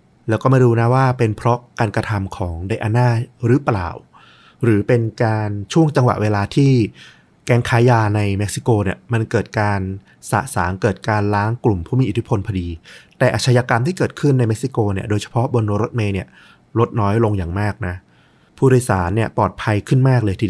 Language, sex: Thai, male